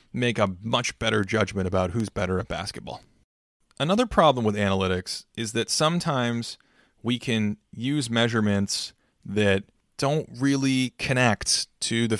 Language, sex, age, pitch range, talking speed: English, male, 20-39, 100-125 Hz, 135 wpm